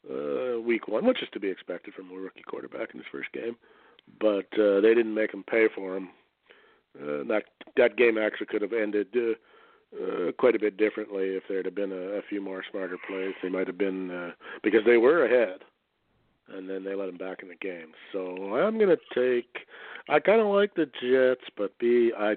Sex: male